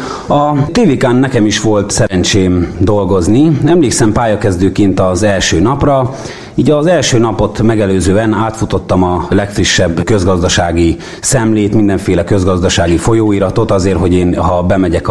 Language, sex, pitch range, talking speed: Hungarian, male, 95-130 Hz, 120 wpm